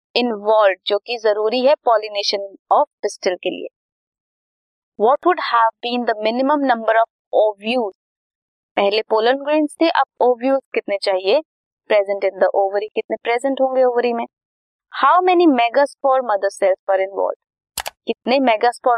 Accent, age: native, 20-39